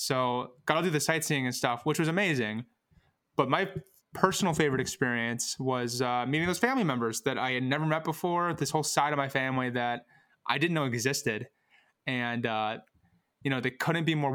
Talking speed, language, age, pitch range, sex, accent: 195 wpm, English, 20-39, 120-145 Hz, male, American